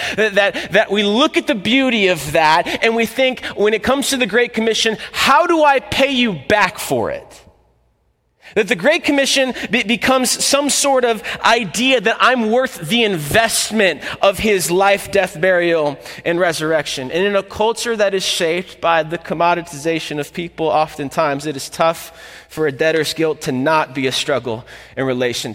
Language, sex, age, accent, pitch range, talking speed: English, male, 30-49, American, 165-230 Hz, 180 wpm